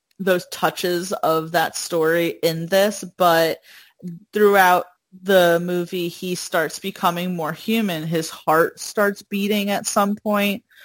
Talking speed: 125 wpm